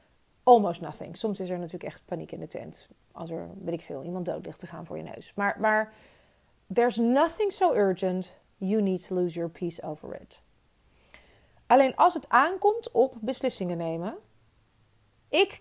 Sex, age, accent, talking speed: female, 40-59, Dutch, 175 wpm